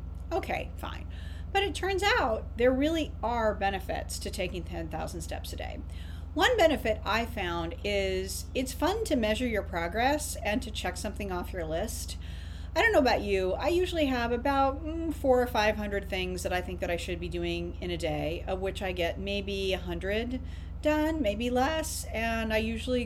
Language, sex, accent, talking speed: English, female, American, 190 wpm